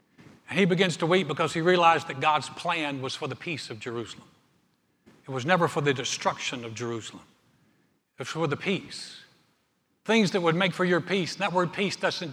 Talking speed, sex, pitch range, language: 205 wpm, male, 150-185 Hz, English